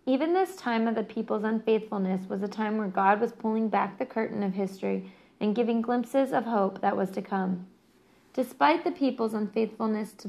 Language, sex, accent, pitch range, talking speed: English, female, American, 210-245 Hz, 190 wpm